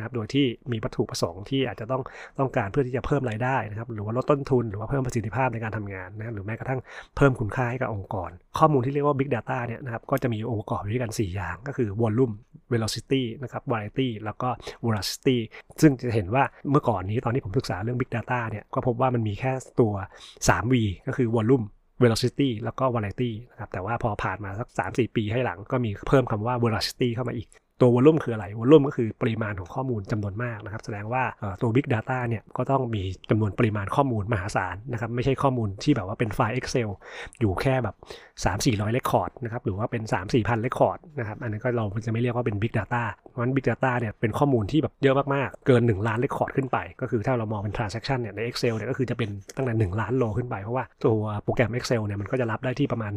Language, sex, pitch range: Thai, male, 110-130 Hz